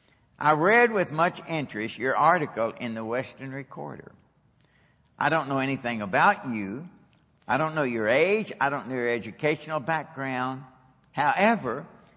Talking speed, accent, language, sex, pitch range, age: 145 wpm, American, English, male, 120-160 Hz, 60-79